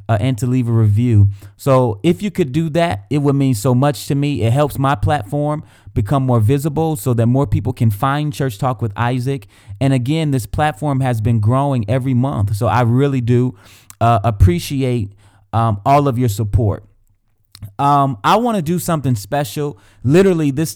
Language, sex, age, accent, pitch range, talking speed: English, male, 30-49, American, 110-140 Hz, 190 wpm